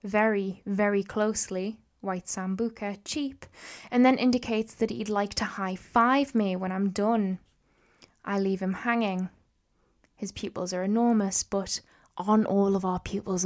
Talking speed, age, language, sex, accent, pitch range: 145 wpm, 10-29, English, female, British, 195-240 Hz